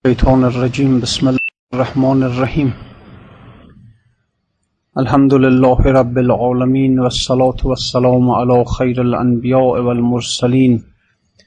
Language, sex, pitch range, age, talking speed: Persian, male, 115-125 Hz, 30-49, 85 wpm